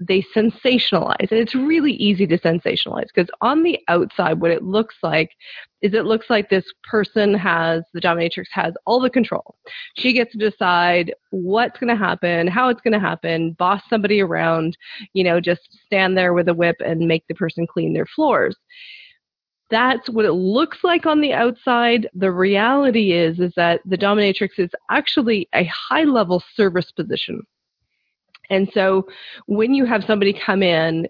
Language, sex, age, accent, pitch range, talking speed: English, female, 30-49, American, 175-225 Hz, 175 wpm